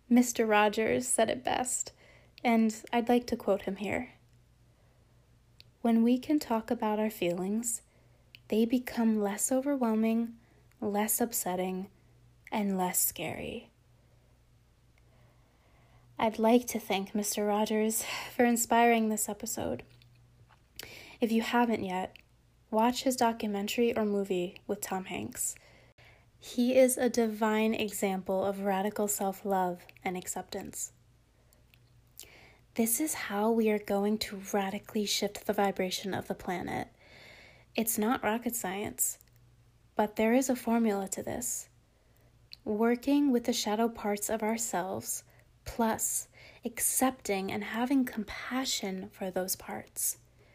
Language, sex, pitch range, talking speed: English, female, 180-230 Hz, 120 wpm